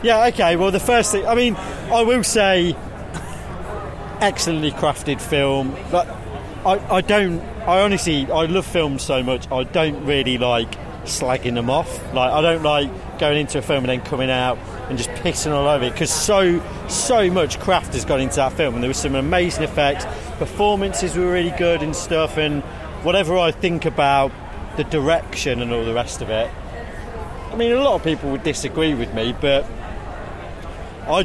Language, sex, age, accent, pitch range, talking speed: English, male, 30-49, British, 125-175 Hz, 185 wpm